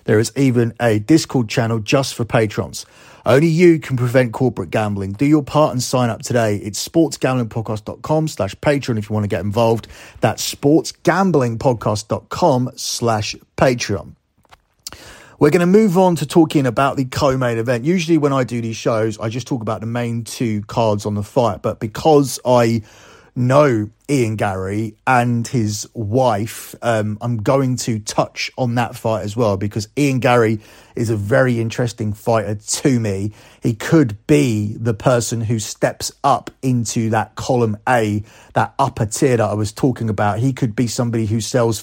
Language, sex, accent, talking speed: English, male, British, 170 wpm